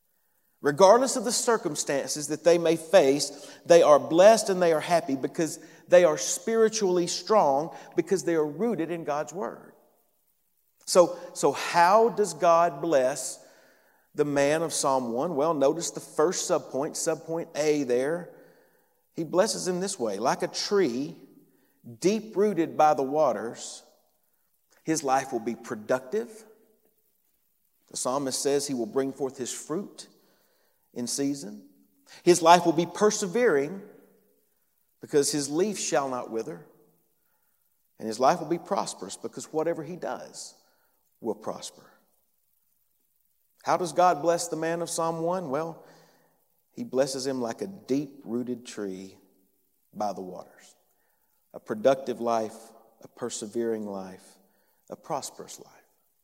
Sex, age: male, 50-69